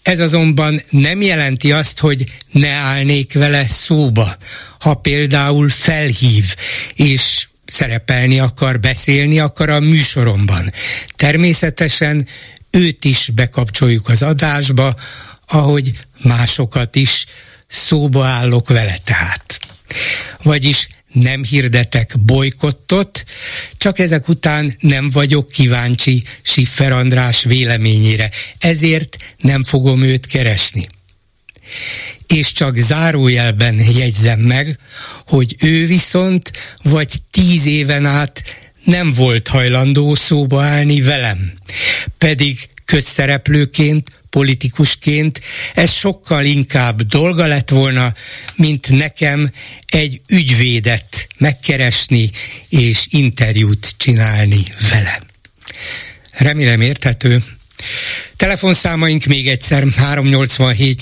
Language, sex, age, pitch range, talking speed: Hungarian, male, 60-79, 120-145 Hz, 90 wpm